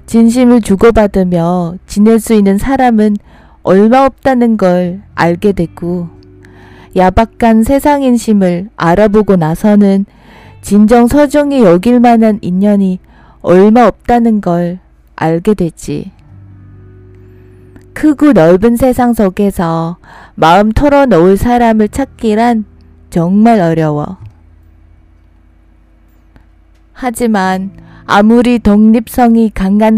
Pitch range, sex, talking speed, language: 165-230 Hz, female, 80 wpm, English